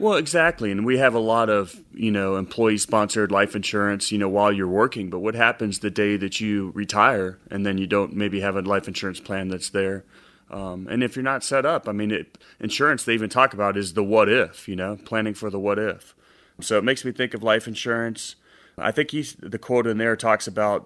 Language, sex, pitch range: English, male, 95-110 Hz